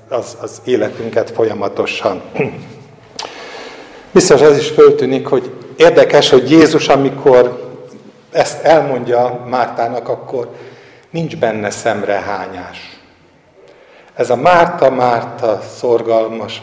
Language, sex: Hungarian, male